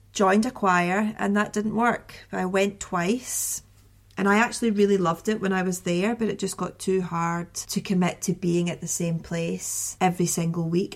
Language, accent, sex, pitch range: English, British, female, 165-200 Hz